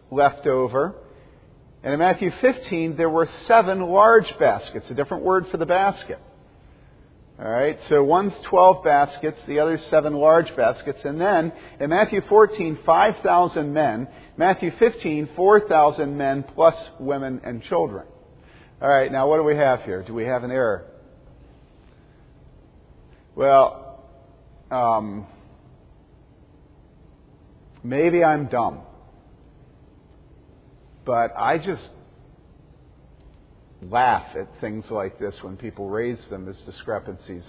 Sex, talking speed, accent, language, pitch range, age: male, 120 wpm, American, English, 125-175 Hz, 50-69